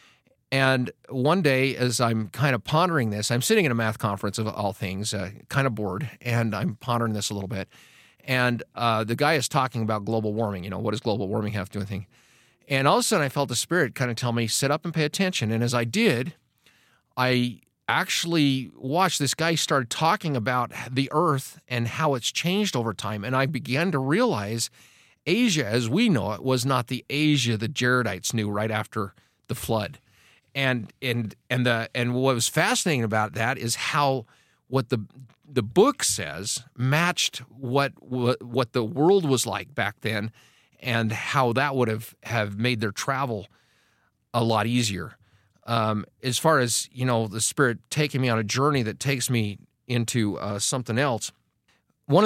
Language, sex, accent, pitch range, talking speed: English, male, American, 110-135 Hz, 195 wpm